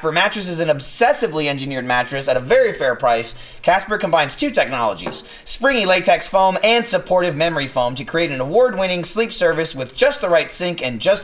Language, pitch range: English, 155-205 Hz